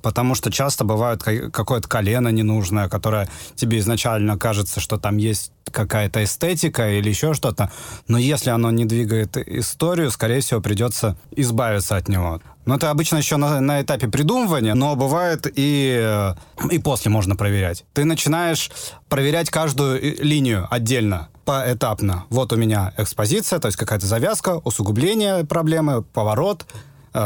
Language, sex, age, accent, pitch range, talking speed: Russian, male, 20-39, native, 110-160 Hz, 140 wpm